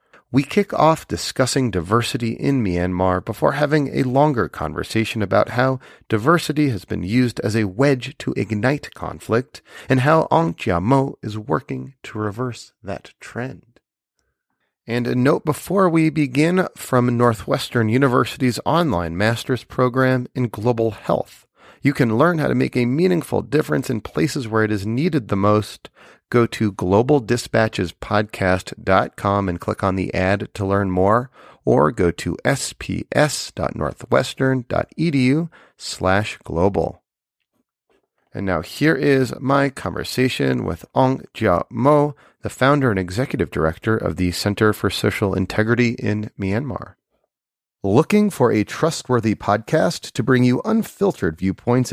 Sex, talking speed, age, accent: male, 135 wpm, 40-59, American